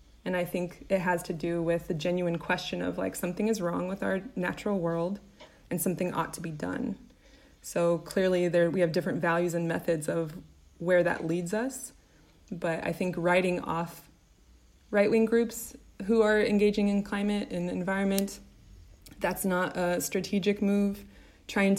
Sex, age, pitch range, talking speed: female, 20-39, 170-195 Hz, 165 wpm